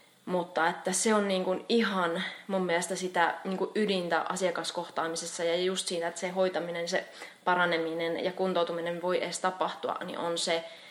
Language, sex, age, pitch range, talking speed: Finnish, female, 20-39, 170-195 Hz, 165 wpm